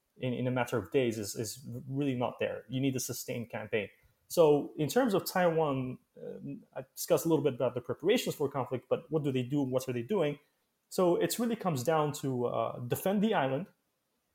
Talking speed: 220 wpm